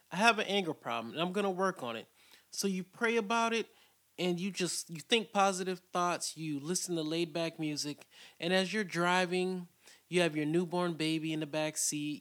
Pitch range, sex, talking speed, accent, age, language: 150-190 Hz, male, 205 wpm, American, 20-39, English